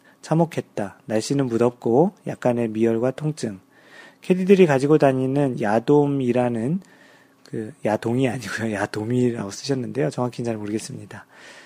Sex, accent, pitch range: male, native, 120-155 Hz